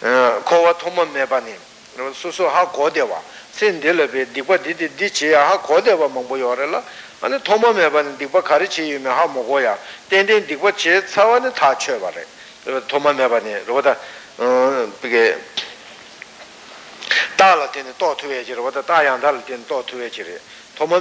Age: 60-79